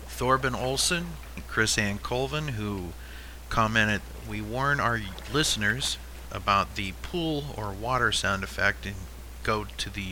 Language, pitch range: English, 95-140 Hz